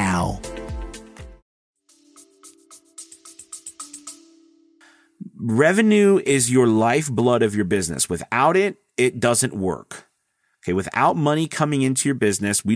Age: 40-59